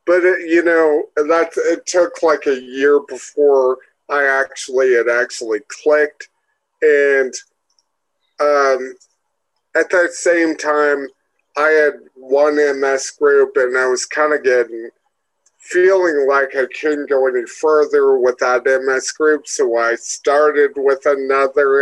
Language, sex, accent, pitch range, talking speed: English, male, American, 135-180 Hz, 130 wpm